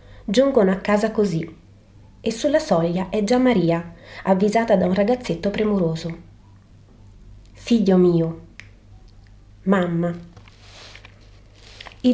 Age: 30-49